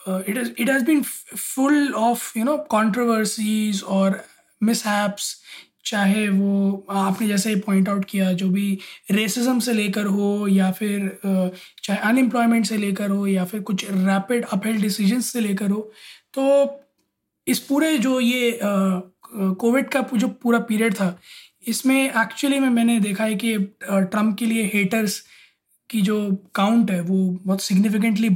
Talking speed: 155 wpm